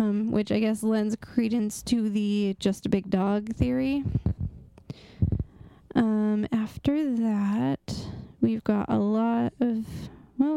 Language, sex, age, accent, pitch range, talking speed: English, female, 20-39, American, 210-260 Hz, 120 wpm